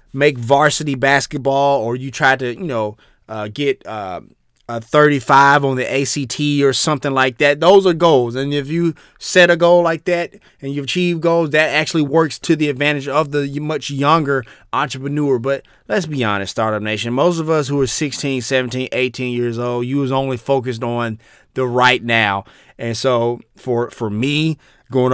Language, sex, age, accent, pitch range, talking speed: English, male, 30-49, American, 130-165 Hz, 185 wpm